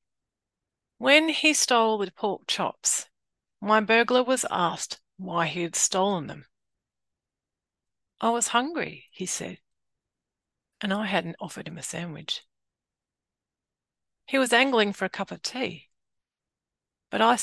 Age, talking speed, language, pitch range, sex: 40-59, 125 wpm, English, 180-225 Hz, female